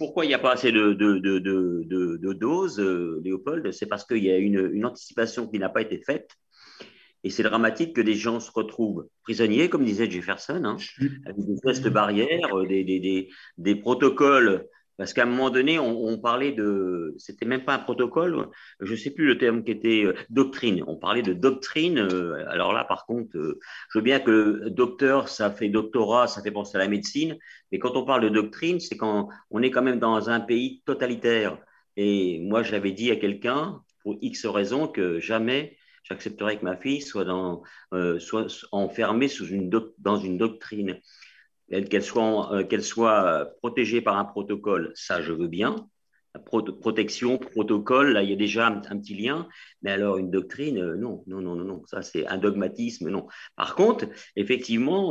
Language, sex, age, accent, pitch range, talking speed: French, male, 50-69, French, 95-120 Hz, 205 wpm